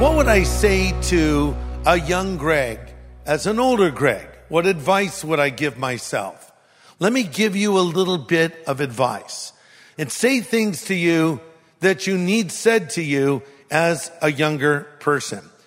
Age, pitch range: 50-69, 150-200 Hz